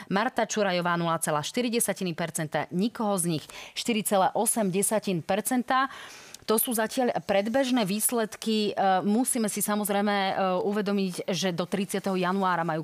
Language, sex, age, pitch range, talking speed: Slovak, female, 30-49, 175-220 Hz, 95 wpm